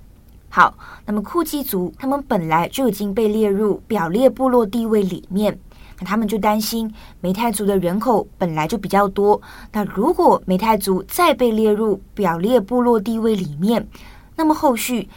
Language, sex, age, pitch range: Chinese, female, 20-39, 190-230 Hz